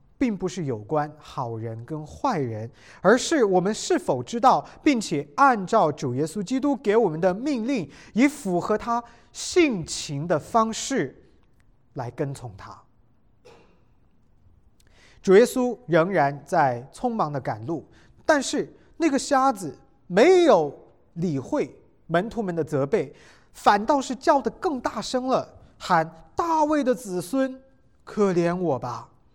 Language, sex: English, male